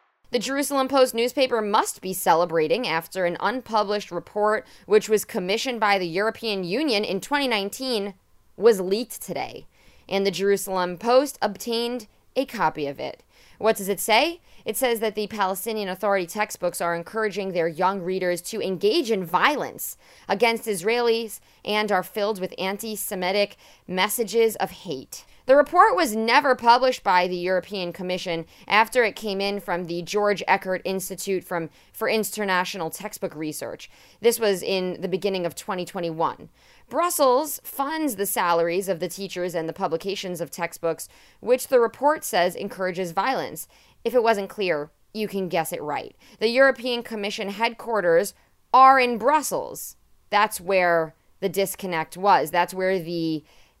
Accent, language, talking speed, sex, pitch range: American, English, 150 wpm, female, 185-230 Hz